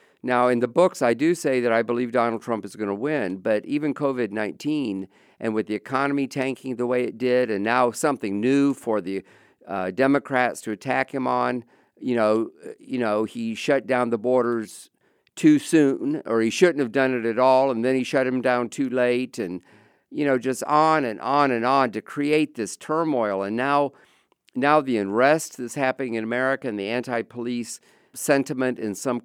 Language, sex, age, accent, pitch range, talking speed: English, male, 50-69, American, 115-140 Hz, 195 wpm